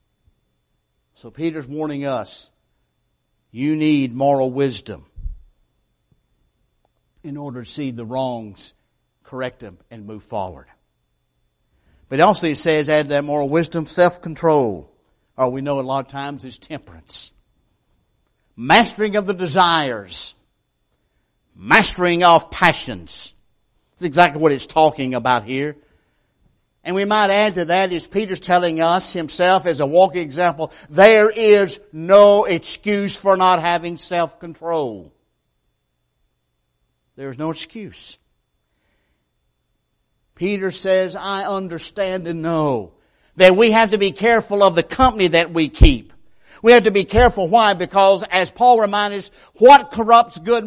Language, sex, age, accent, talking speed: English, male, 60-79, American, 130 wpm